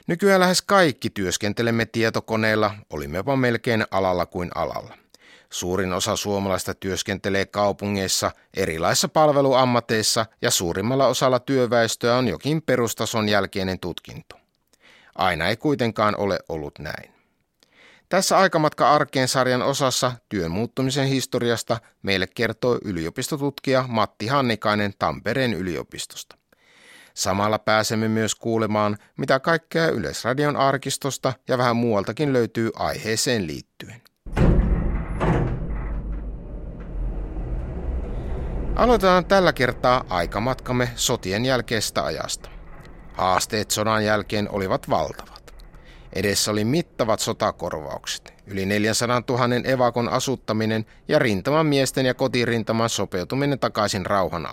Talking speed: 100 wpm